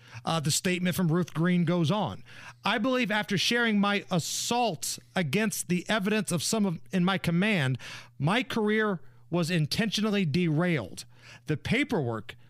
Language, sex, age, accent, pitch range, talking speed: English, male, 40-59, American, 145-210 Hz, 145 wpm